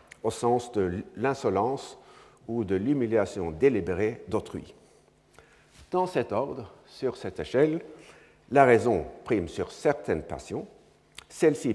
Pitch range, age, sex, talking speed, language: 115-160 Hz, 60-79, male, 110 wpm, French